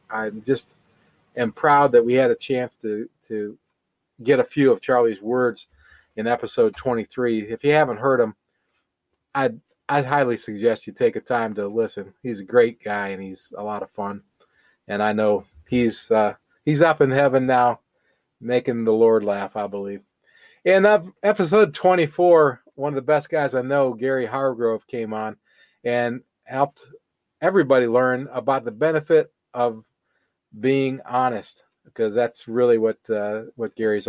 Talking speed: 165 wpm